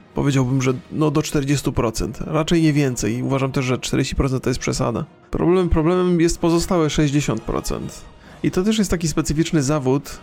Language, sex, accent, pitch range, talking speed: Polish, male, native, 130-170 Hz, 160 wpm